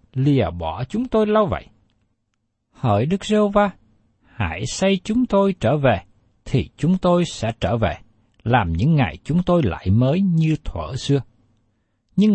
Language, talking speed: Vietnamese, 155 wpm